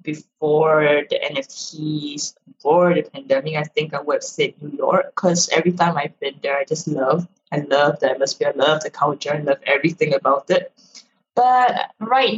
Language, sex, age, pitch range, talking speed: English, female, 10-29, 155-210 Hz, 180 wpm